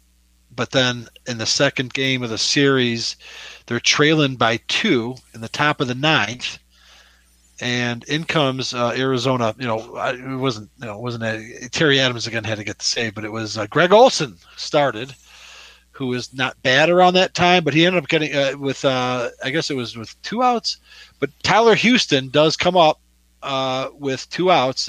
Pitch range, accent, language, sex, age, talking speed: 115-145 Hz, American, English, male, 40-59, 195 wpm